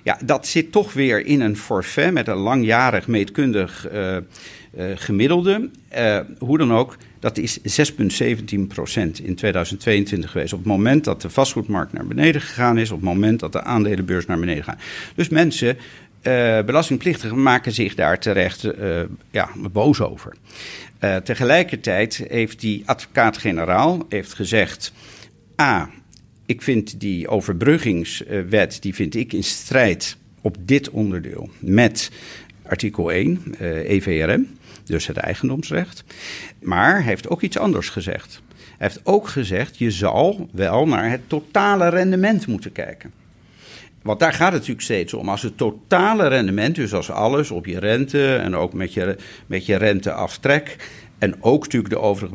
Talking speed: 150 wpm